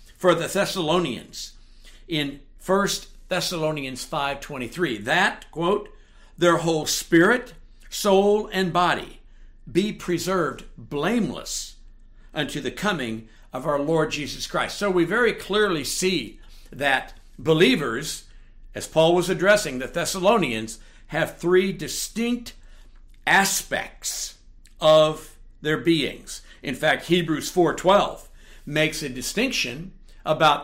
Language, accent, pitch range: English, American, 125-175 Hz